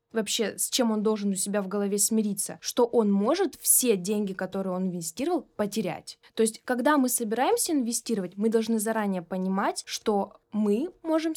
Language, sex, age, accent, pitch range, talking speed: Russian, female, 10-29, native, 200-270 Hz, 170 wpm